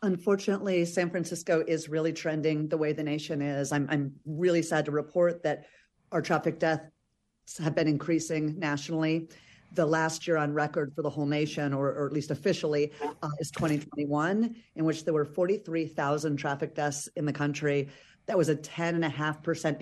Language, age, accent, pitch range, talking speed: English, 40-59, American, 150-175 Hz, 180 wpm